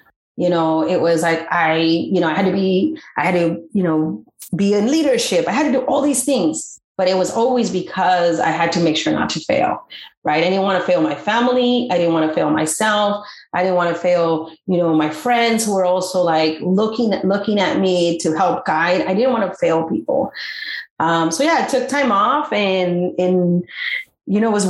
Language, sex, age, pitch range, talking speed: English, female, 30-49, 170-230 Hz, 230 wpm